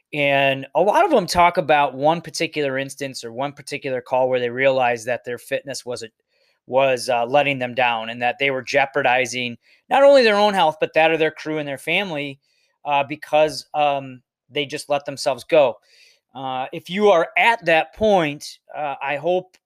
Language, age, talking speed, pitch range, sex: English, 30-49, 190 wpm, 135-155 Hz, male